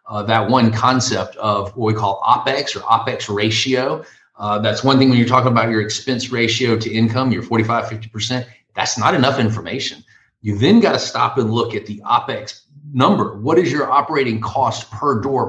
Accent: American